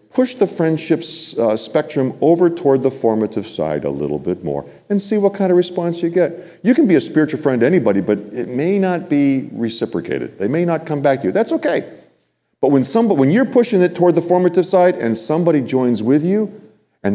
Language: English